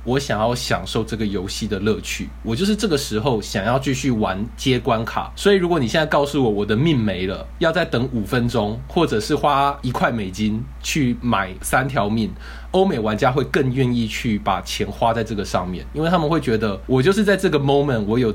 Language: Chinese